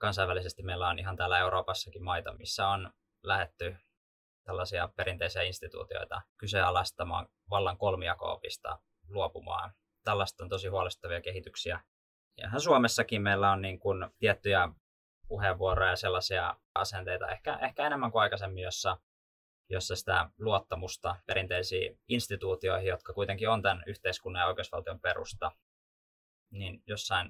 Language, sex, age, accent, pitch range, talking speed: Finnish, male, 20-39, native, 90-105 Hz, 120 wpm